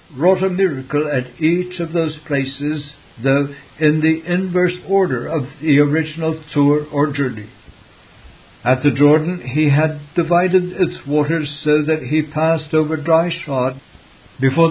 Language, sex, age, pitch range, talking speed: English, male, 60-79, 135-165 Hz, 140 wpm